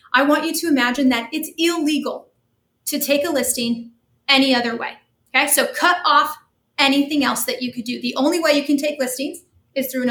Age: 30-49